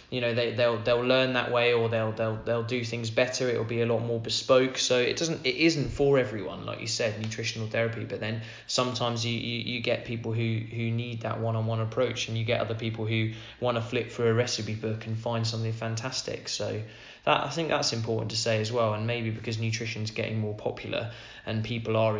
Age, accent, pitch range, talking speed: 20-39, British, 110-120 Hz, 230 wpm